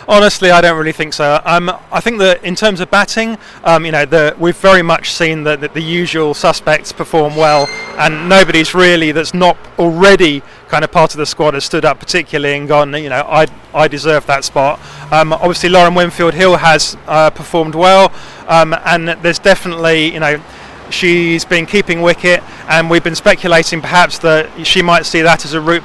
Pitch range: 155-175 Hz